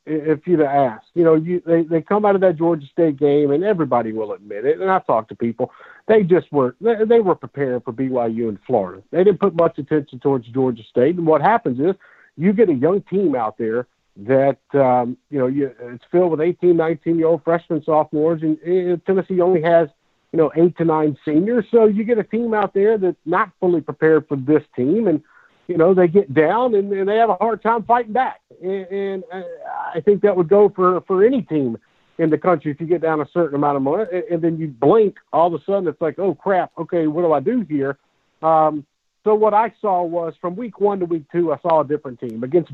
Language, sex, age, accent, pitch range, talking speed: English, male, 50-69, American, 150-185 Hz, 235 wpm